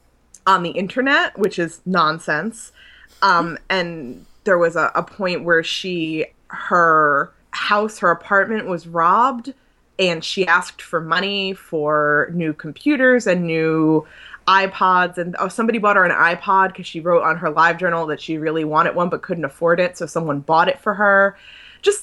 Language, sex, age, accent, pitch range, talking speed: English, female, 20-39, American, 160-200 Hz, 170 wpm